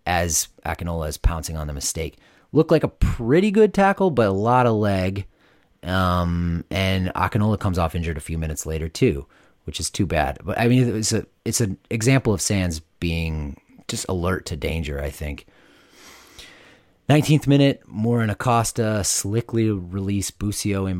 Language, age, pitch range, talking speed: English, 30-49, 80-100 Hz, 165 wpm